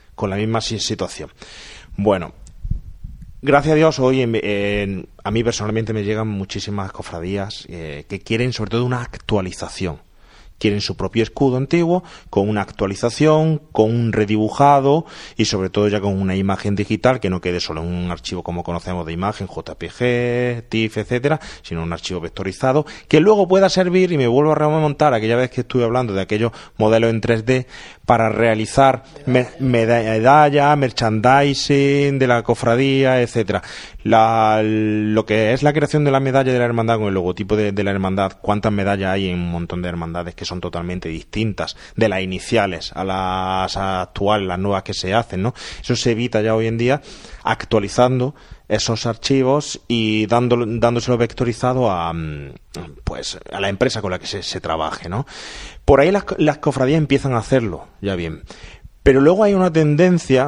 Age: 30-49